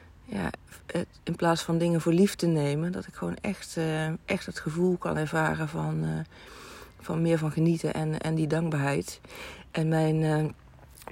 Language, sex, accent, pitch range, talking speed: Dutch, female, Dutch, 150-170 Hz, 180 wpm